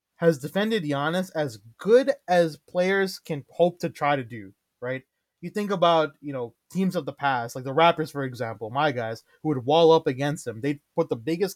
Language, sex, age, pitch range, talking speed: English, male, 20-39, 140-180 Hz, 210 wpm